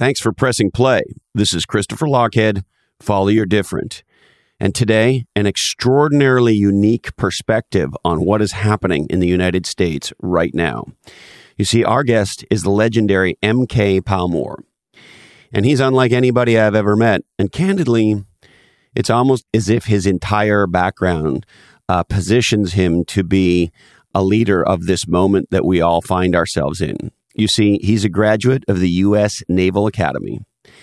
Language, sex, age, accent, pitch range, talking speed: English, male, 40-59, American, 90-115 Hz, 150 wpm